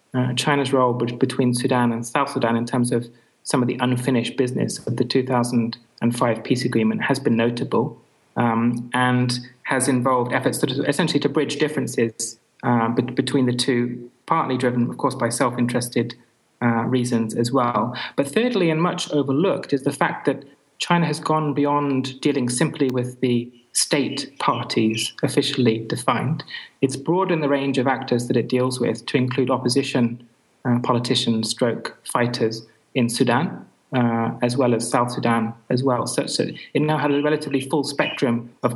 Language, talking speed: English, 160 wpm